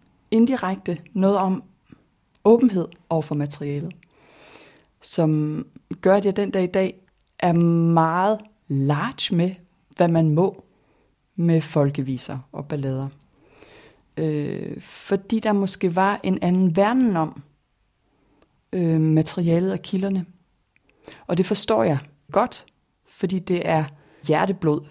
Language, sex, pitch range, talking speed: Danish, female, 150-185 Hz, 110 wpm